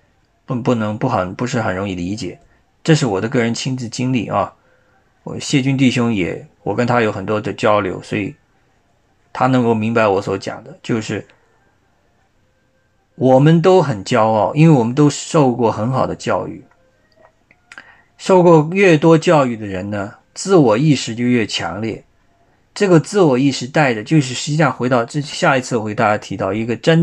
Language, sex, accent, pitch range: Chinese, male, native, 110-150 Hz